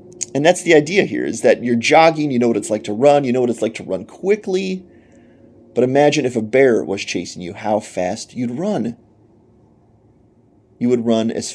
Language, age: English, 30-49